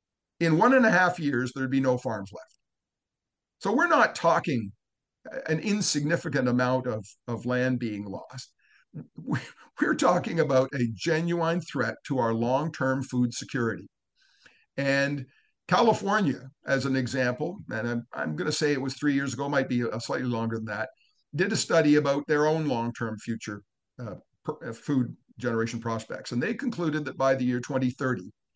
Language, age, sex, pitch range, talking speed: English, 50-69, male, 115-145 Hz, 160 wpm